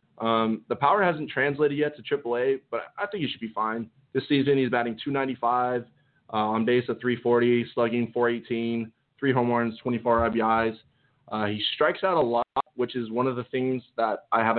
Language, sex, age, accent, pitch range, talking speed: English, male, 20-39, American, 115-130 Hz, 195 wpm